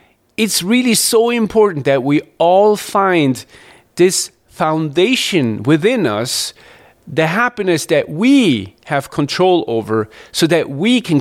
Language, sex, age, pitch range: English, male, 40-59, 135-190 Hz